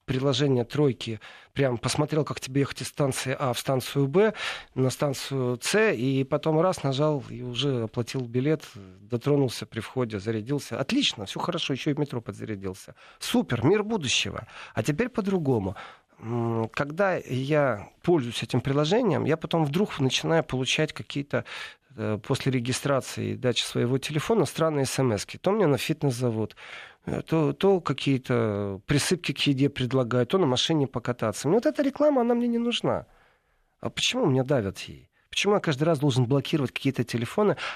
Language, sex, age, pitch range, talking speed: Russian, male, 40-59, 120-155 Hz, 155 wpm